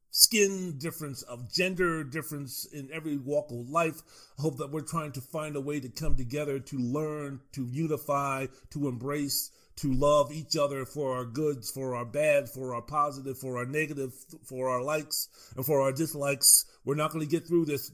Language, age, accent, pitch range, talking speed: English, 40-59, American, 135-175 Hz, 195 wpm